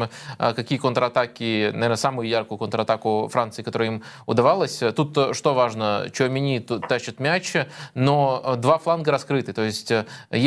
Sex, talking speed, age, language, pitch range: male, 125 wpm, 20-39, Russian, 115-140 Hz